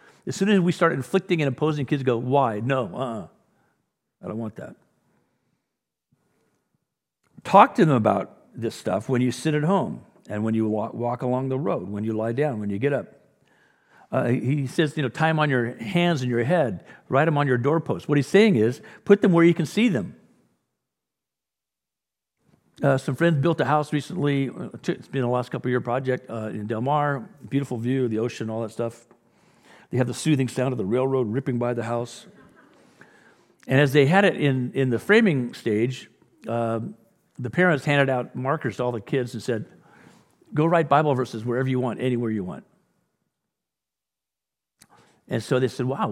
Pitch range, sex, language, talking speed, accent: 115-150 Hz, male, English, 190 wpm, American